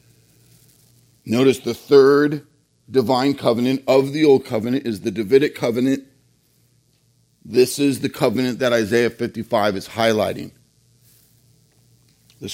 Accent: American